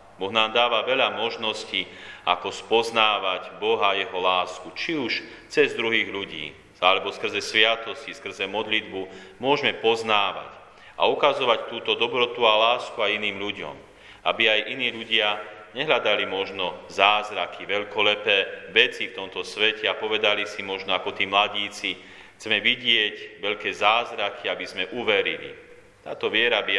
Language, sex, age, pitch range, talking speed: Slovak, male, 40-59, 95-115 Hz, 135 wpm